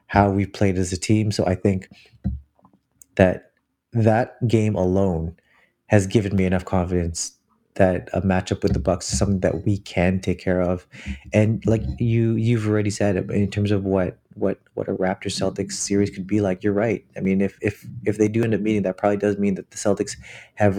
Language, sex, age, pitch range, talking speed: English, male, 20-39, 95-105 Hz, 210 wpm